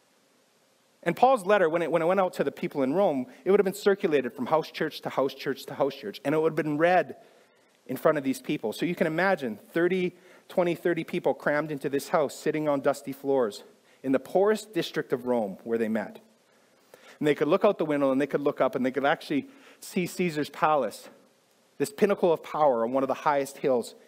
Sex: male